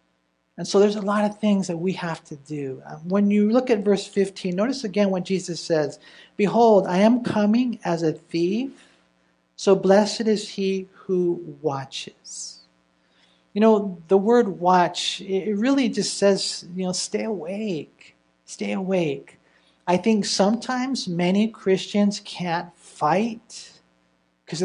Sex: male